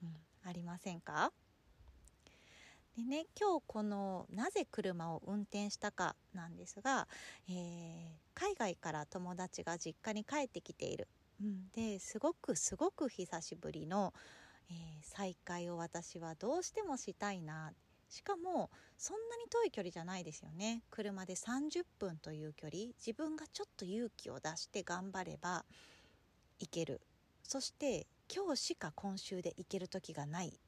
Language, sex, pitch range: Japanese, female, 175-250 Hz